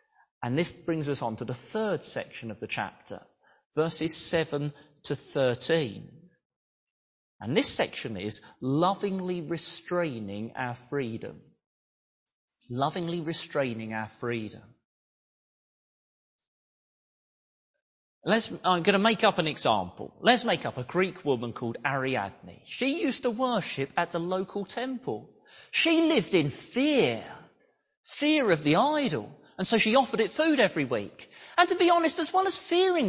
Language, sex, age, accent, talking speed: English, male, 30-49, British, 135 wpm